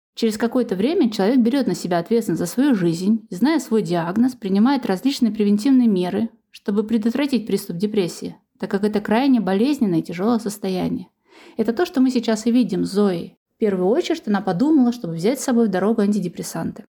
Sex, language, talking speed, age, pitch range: female, Russian, 185 wpm, 20-39, 210-265 Hz